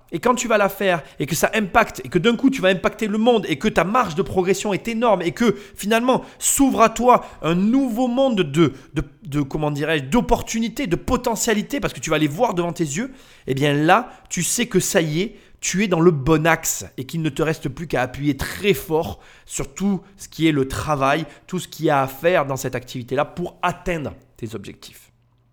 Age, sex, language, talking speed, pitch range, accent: 30-49, male, French, 235 wpm, 135-195 Hz, French